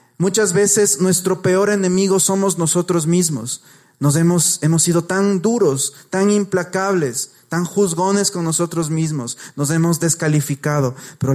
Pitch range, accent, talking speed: 145-180 Hz, Mexican, 130 wpm